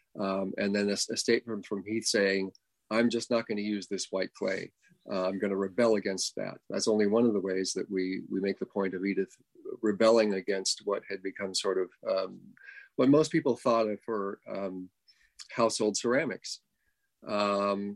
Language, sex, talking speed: English, male, 190 wpm